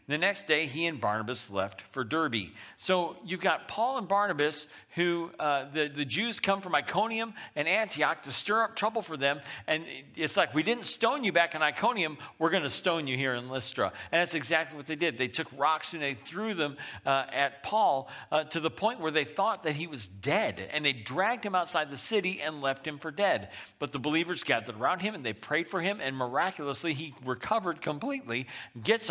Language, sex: English, male